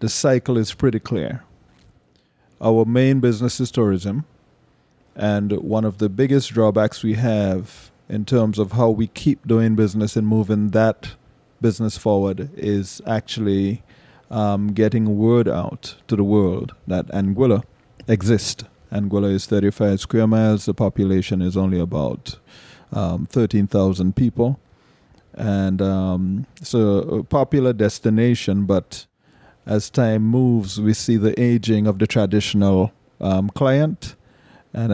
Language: English